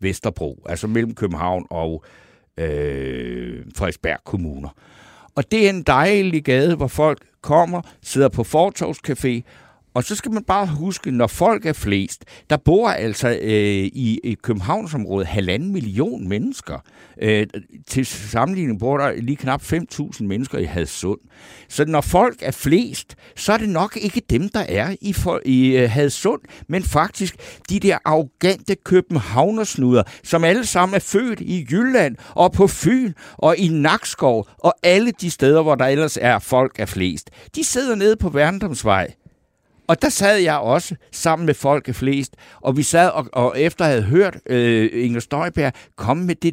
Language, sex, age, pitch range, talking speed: Danish, male, 60-79, 115-185 Hz, 160 wpm